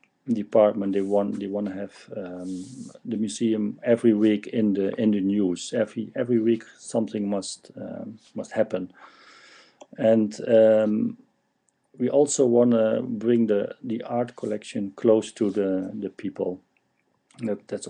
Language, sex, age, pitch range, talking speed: English, male, 50-69, 95-115 Hz, 140 wpm